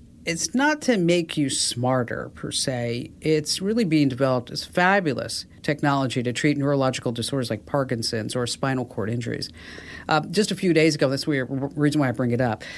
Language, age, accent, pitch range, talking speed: English, 50-69, American, 125-160 Hz, 185 wpm